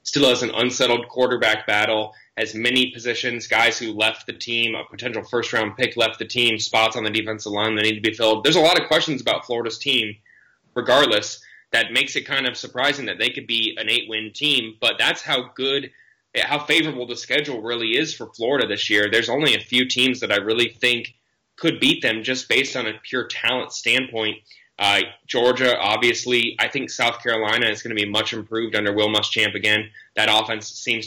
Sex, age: male, 20-39